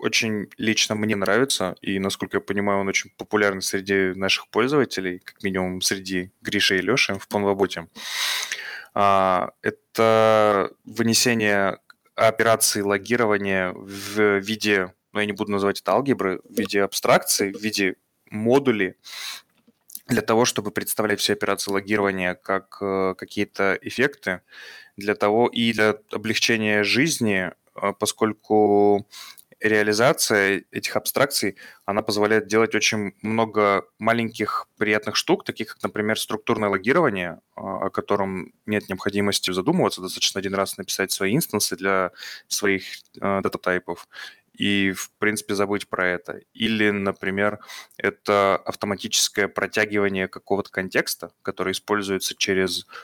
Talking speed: 120 wpm